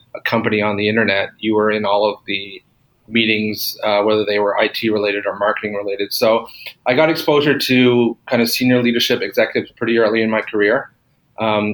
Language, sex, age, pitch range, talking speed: English, male, 30-49, 105-120 Hz, 185 wpm